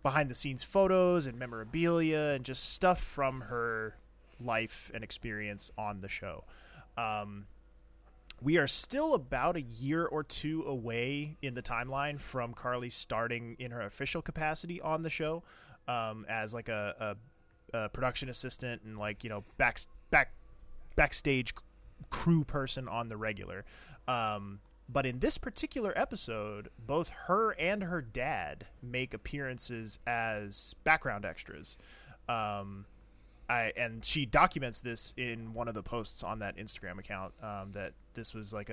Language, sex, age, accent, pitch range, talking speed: English, male, 20-39, American, 105-145 Hz, 150 wpm